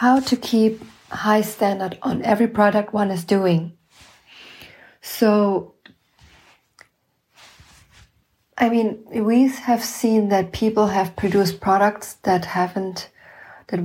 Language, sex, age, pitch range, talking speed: English, female, 30-49, 175-200 Hz, 110 wpm